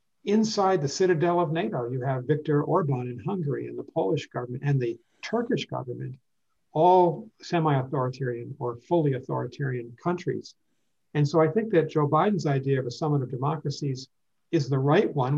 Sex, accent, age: male, American, 60-79